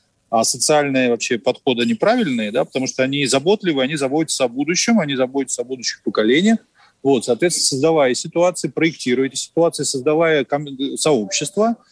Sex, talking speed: male, 135 wpm